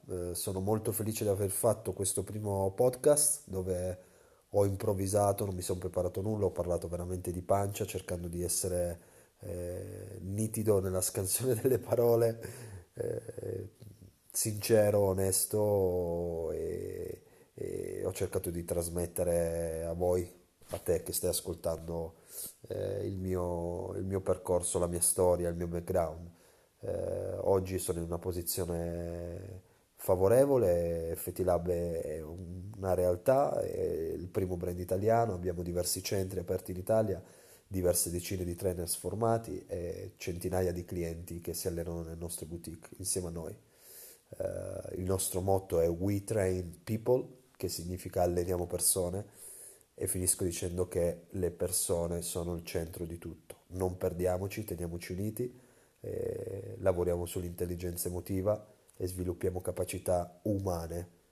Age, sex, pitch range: 30-49, male, 85-100 Hz